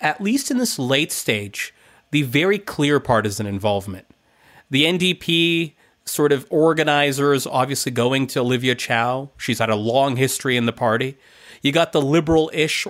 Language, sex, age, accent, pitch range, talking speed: English, male, 30-49, American, 130-160 Hz, 155 wpm